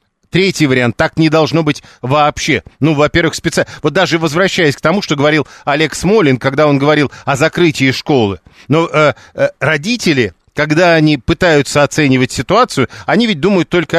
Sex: male